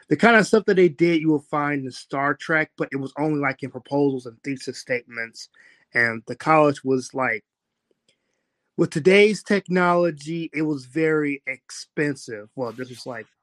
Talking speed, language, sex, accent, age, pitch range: 175 wpm, English, male, American, 20-39, 125-155 Hz